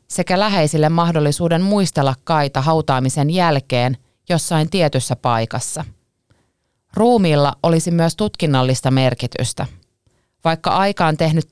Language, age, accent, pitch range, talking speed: Finnish, 30-49, native, 130-170 Hz, 100 wpm